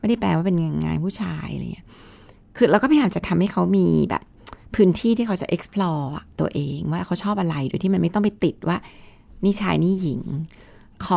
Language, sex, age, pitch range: Thai, female, 30-49, 155-205 Hz